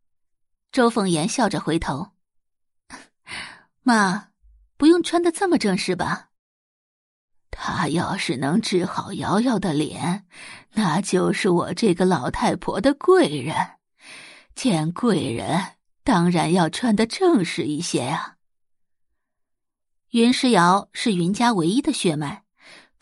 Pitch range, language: 170-230 Hz, Chinese